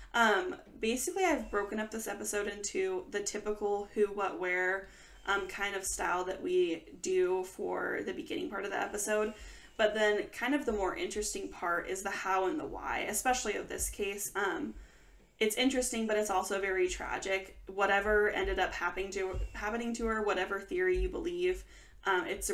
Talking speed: 180 wpm